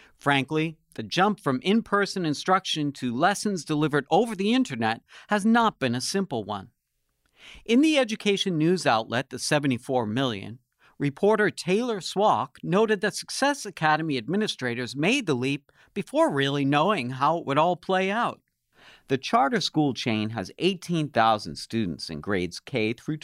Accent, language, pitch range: American, English, 125-190 Hz